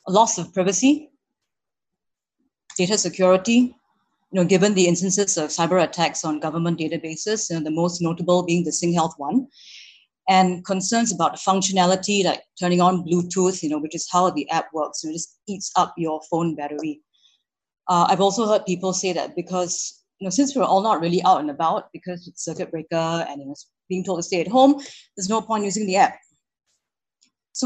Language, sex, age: English, female, 30-49